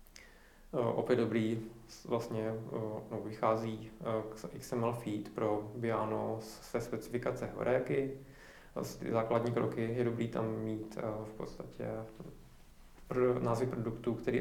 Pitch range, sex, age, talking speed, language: 110-120 Hz, male, 20-39, 95 wpm, Czech